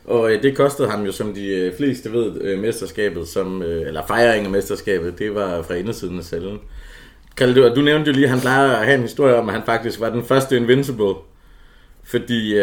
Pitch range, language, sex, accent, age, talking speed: 95-120 Hz, Danish, male, native, 30-49, 195 wpm